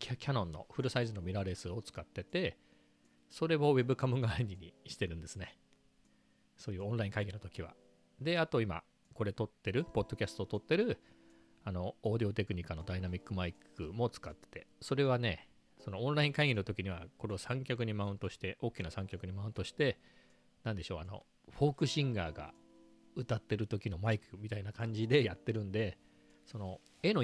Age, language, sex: 40-59, Japanese, male